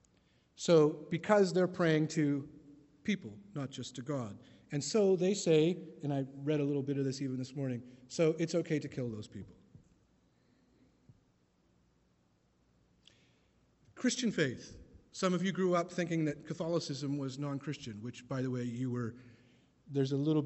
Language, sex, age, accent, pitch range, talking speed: English, male, 50-69, American, 130-165 Hz, 155 wpm